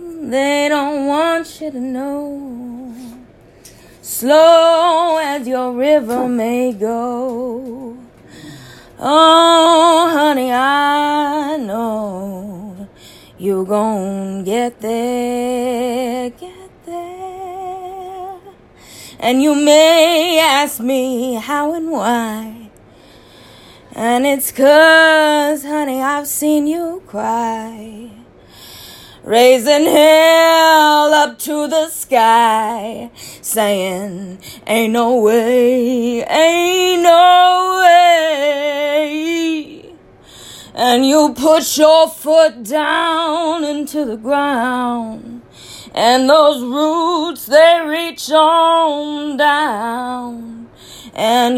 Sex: female